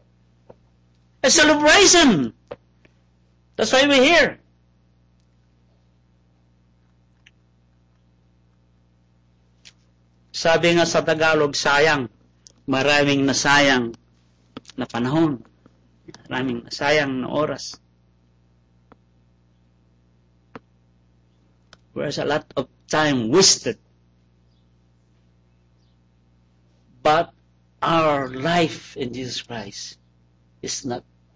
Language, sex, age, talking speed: English, male, 50-69, 65 wpm